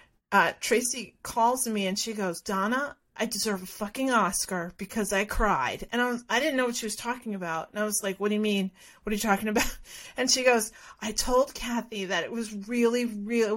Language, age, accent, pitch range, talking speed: English, 40-59, American, 225-335 Hz, 220 wpm